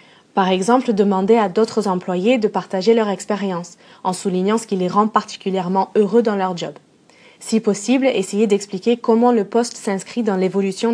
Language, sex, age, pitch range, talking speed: English, female, 20-39, 200-240 Hz, 170 wpm